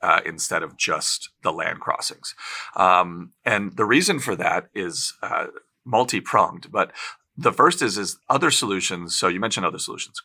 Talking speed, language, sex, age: 165 wpm, English, male, 30-49